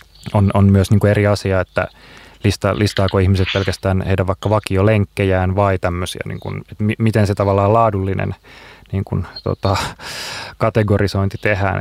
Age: 30-49